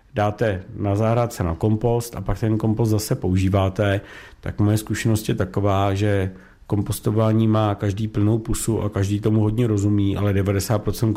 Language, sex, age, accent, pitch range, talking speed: Czech, male, 50-69, native, 95-110 Hz, 160 wpm